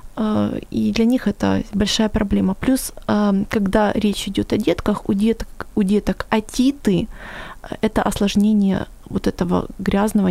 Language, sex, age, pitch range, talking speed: Ukrainian, female, 20-39, 185-220 Hz, 135 wpm